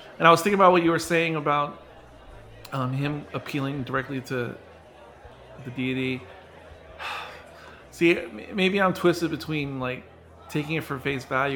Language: English